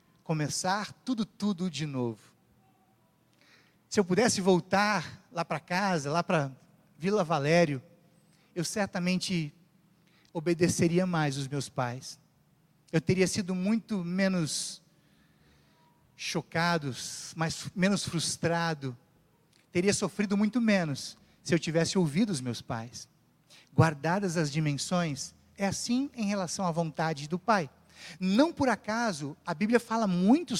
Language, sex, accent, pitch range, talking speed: Portuguese, male, Brazilian, 165-220 Hz, 120 wpm